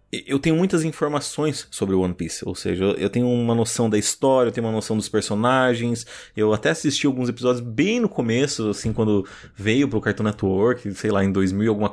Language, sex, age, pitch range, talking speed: Portuguese, male, 20-39, 100-130 Hz, 205 wpm